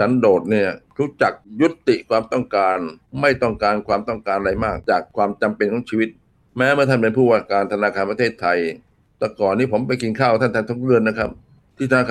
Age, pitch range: 60-79, 115-135 Hz